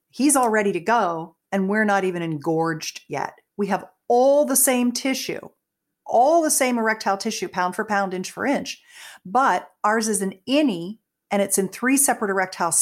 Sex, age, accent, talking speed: female, 50-69, American, 185 wpm